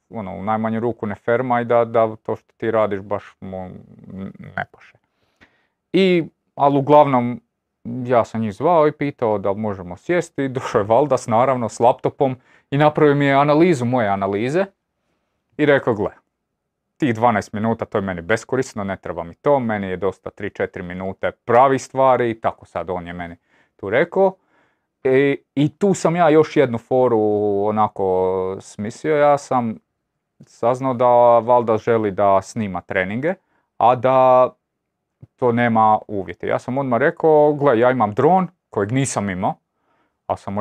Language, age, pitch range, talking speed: Croatian, 30-49, 100-140 Hz, 160 wpm